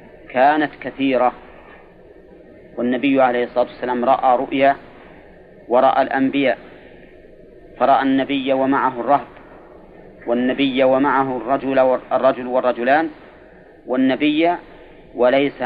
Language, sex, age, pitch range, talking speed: Arabic, male, 40-59, 130-155 Hz, 75 wpm